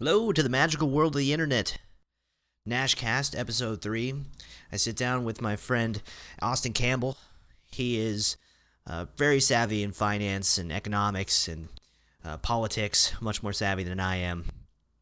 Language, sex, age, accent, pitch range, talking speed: English, male, 30-49, American, 85-115 Hz, 150 wpm